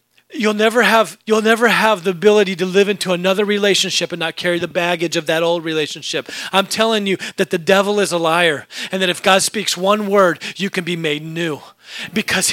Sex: male